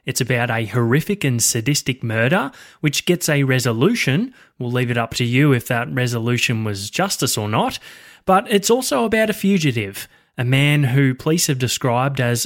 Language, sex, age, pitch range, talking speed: English, male, 20-39, 120-170 Hz, 180 wpm